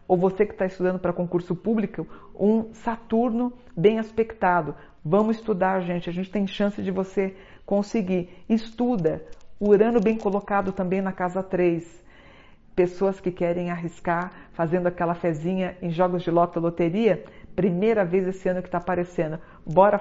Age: 50-69